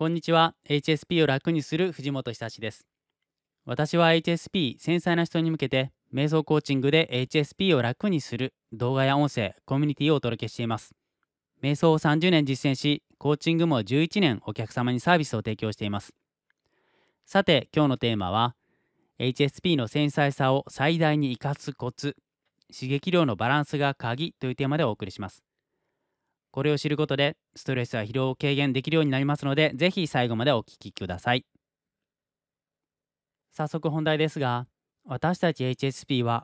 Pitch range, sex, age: 120-155 Hz, male, 20-39